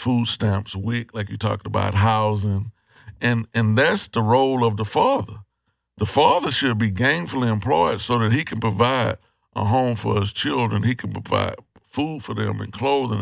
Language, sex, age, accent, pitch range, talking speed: English, male, 60-79, American, 105-125 Hz, 180 wpm